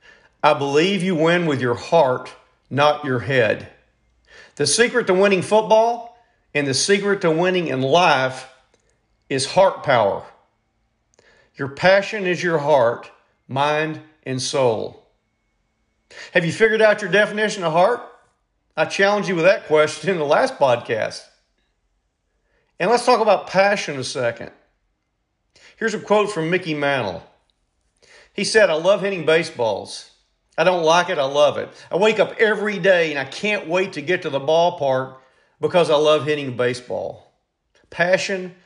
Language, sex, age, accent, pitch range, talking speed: English, male, 50-69, American, 135-195 Hz, 150 wpm